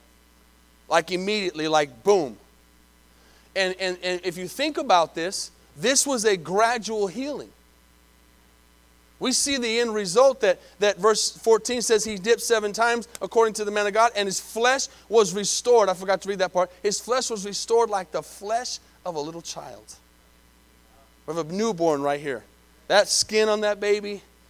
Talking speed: 170 wpm